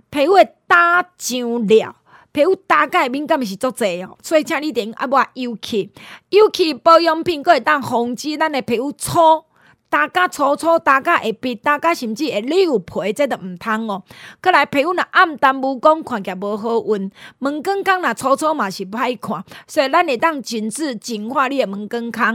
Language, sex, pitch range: Chinese, female, 235-320 Hz